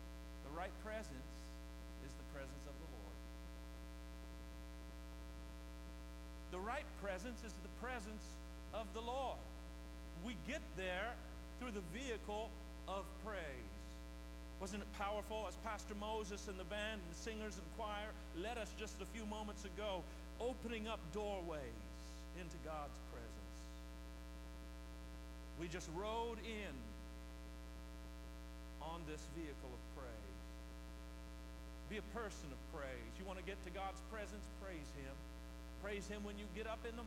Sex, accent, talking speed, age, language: male, American, 135 wpm, 50-69, English